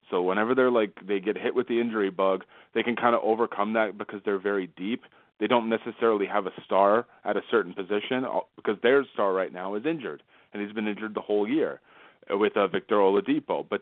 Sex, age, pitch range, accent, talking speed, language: male, 30-49, 100-120 Hz, American, 215 wpm, English